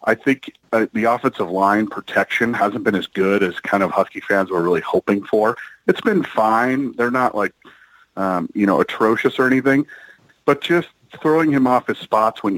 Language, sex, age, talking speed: English, male, 40-59, 185 wpm